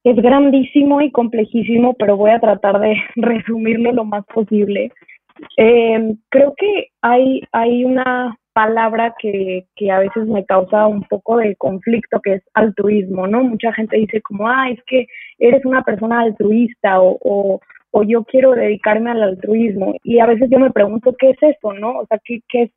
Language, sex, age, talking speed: Spanish, female, 20-39, 175 wpm